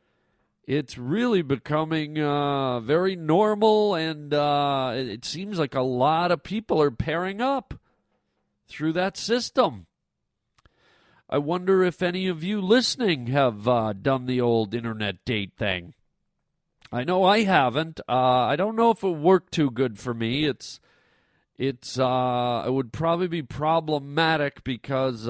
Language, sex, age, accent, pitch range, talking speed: English, male, 40-59, American, 125-165 Hz, 140 wpm